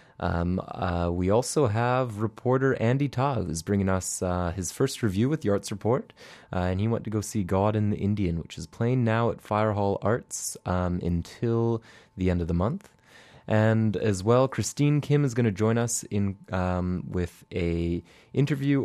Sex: male